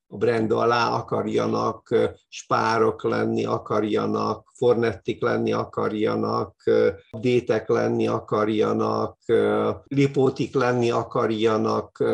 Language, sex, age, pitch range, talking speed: English, male, 50-69, 120-150 Hz, 80 wpm